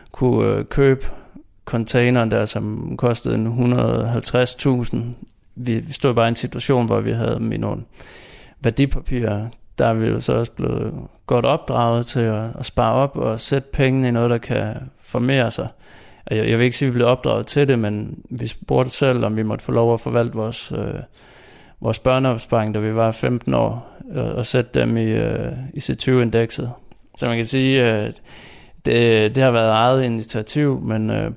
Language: Danish